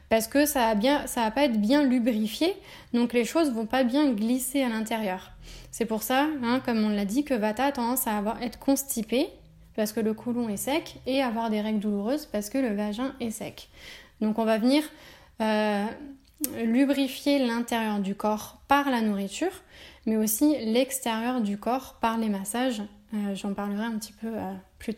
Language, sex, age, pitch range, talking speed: French, female, 10-29, 215-265 Hz, 195 wpm